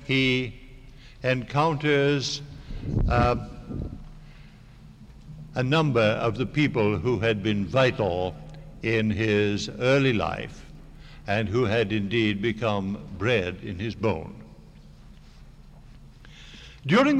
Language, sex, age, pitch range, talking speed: English, male, 60-79, 120-160 Hz, 90 wpm